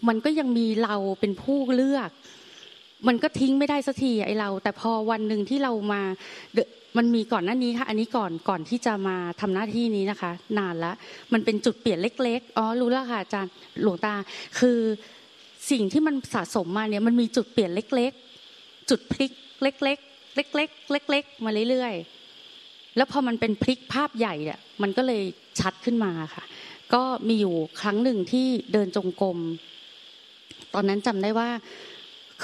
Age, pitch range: 20-39, 190-245 Hz